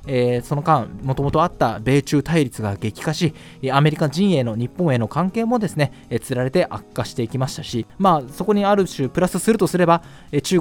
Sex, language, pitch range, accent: male, Japanese, 125-195 Hz, native